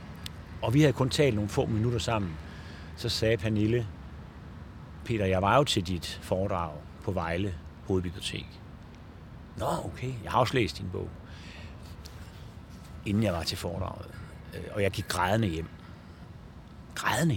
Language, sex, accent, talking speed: Danish, male, native, 140 wpm